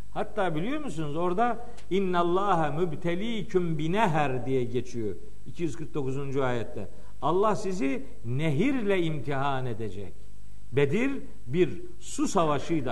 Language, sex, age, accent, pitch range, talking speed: Turkish, male, 50-69, native, 125-175 Hz, 80 wpm